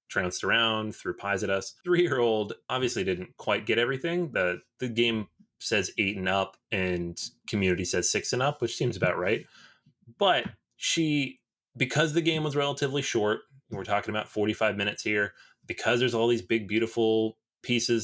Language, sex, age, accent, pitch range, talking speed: English, male, 20-39, American, 100-125 Hz, 165 wpm